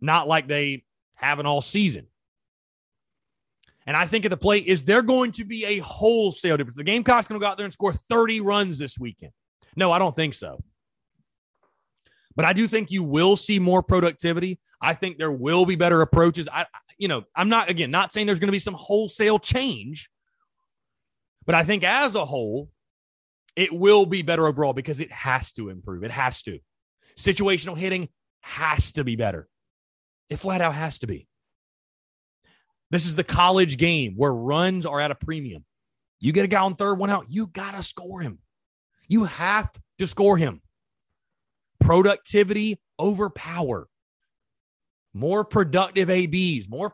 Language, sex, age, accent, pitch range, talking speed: English, male, 30-49, American, 140-200 Hz, 175 wpm